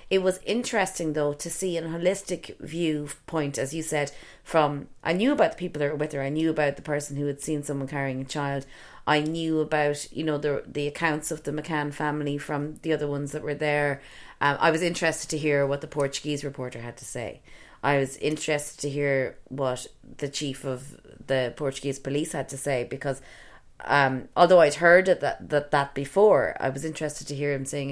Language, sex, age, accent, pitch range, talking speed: English, female, 30-49, Irish, 140-165 Hz, 210 wpm